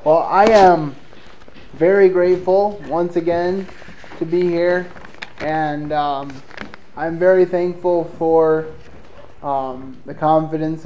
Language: English